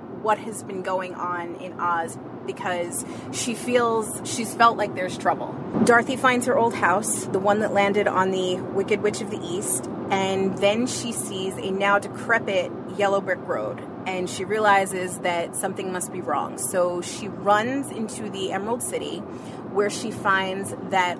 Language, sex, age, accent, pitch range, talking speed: English, female, 30-49, American, 185-215 Hz, 170 wpm